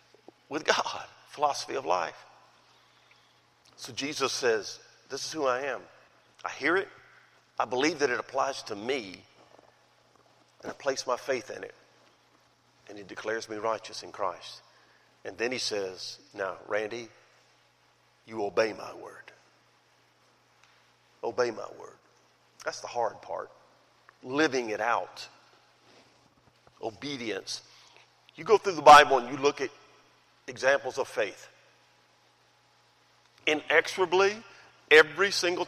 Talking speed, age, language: 125 wpm, 50-69, English